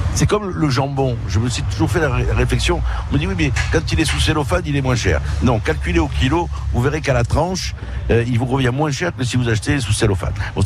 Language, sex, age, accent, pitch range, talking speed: French, male, 60-79, French, 100-125 Hz, 275 wpm